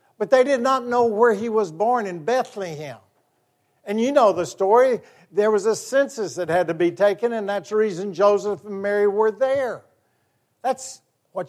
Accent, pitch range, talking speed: American, 160-215 Hz, 190 wpm